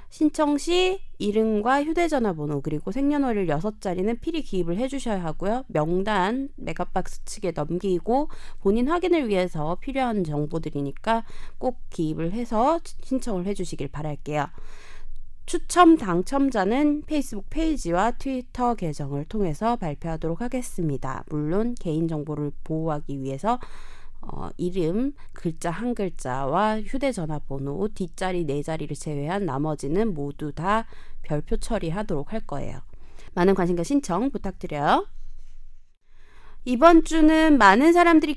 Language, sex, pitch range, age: Korean, female, 160-250 Hz, 20-39